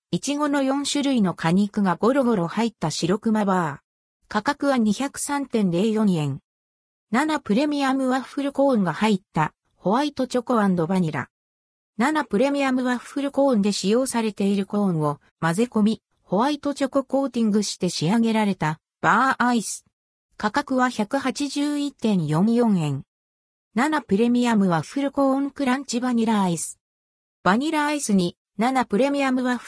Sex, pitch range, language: female, 180-260 Hz, Japanese